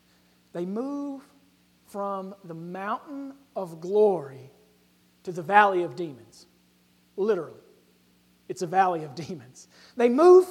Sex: male